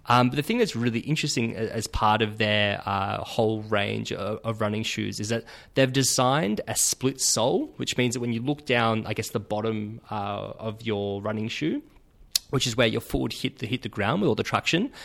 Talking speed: 225 wpm